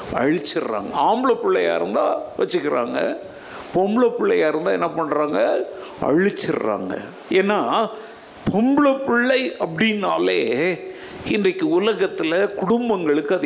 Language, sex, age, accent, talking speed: Tamil, male, 60-79, native, 85 wpm